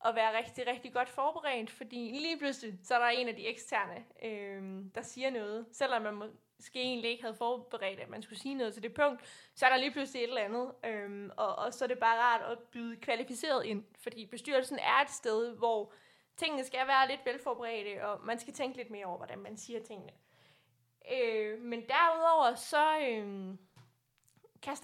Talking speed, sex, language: 200 wpm, female, Danish